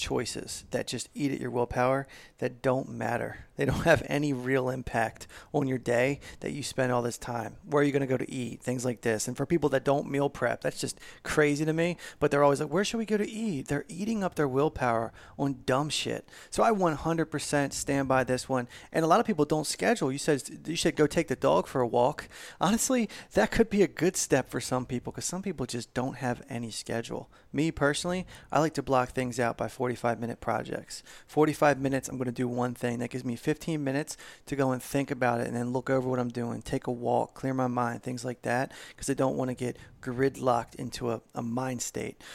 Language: English